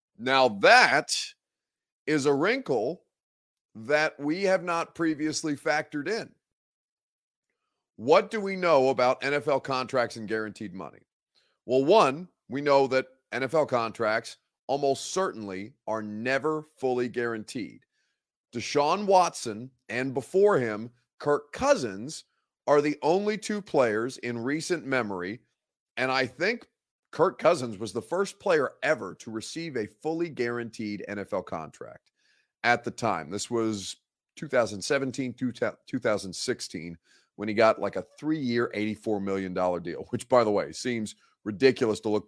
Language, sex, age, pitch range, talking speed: English, male, 40-59, 105-145 Hz, 130 wpm